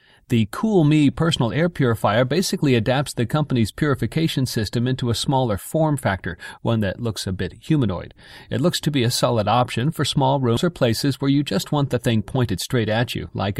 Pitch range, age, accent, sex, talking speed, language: 110-140 Hz, 40-59, American, male, 205 wpm, English